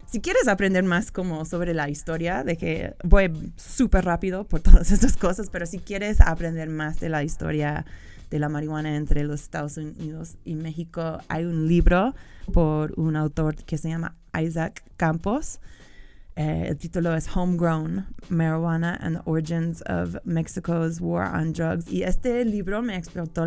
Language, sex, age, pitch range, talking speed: Spanish, female, 20-39, 150-175 Hz, 165 wpm